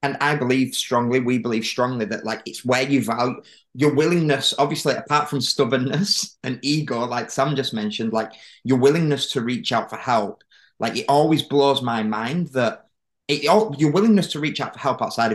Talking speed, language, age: 195 wpm, English, 20-39